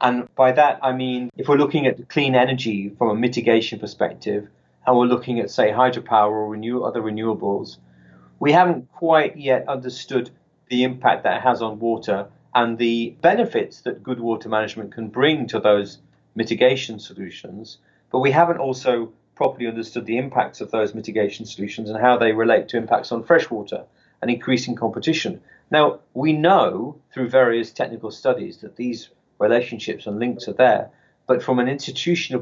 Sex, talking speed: male, 165 wpm